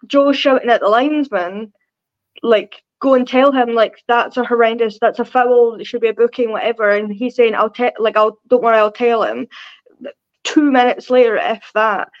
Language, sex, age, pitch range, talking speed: English, female, 10-29, 215-255 Hz, 195 wpm